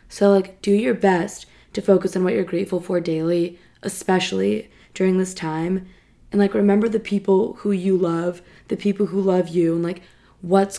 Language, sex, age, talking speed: English, female, 20-39, 185 wpm